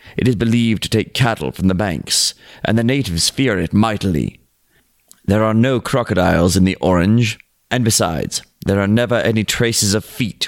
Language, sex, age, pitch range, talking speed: English, male, 30-49, 95-125 Hz, 180 wpm